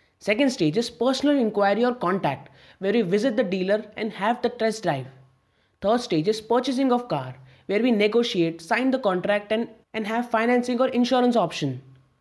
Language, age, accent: English, 20-39, Indian